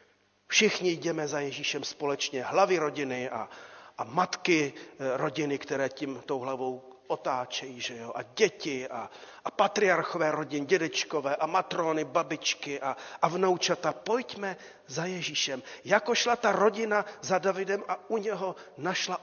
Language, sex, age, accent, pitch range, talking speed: Czech, male, 40-59, native, 145-185 Hz, 135 wpm